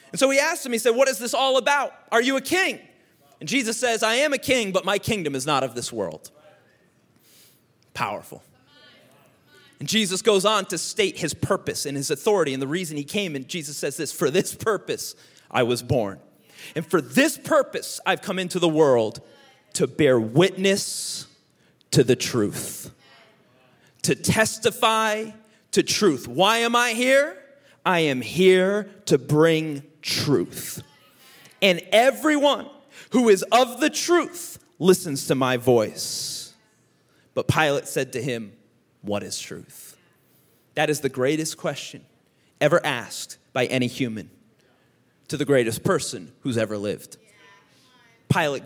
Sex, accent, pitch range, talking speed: male, American, 145-235 Hz, 155 wpm